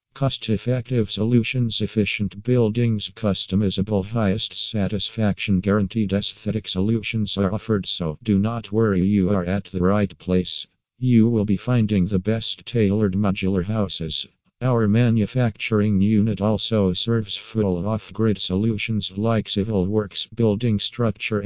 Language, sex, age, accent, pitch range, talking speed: English, male, 50-69, American, 95-110 Hz, 125 wpm